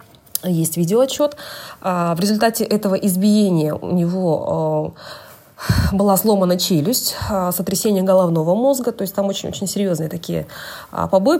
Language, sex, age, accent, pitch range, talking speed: Russian, female, 20-39, native, 170-215 Hz, 110 wpm